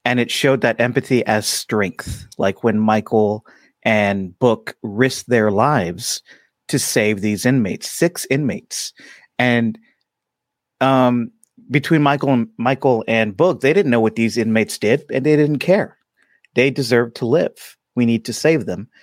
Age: 40-59